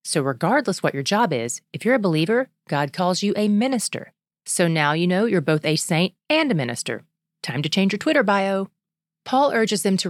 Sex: female